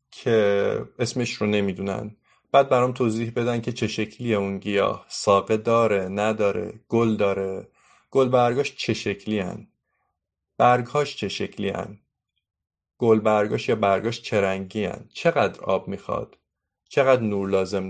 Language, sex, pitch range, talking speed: Persian, male, 105-125 Hz, 130 wpm